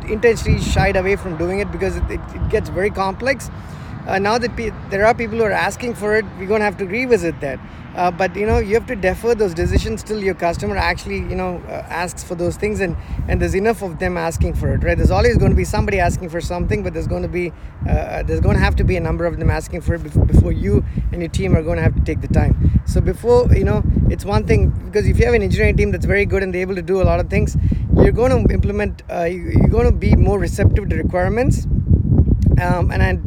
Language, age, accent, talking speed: English, 20-39, Indian, 265 wpm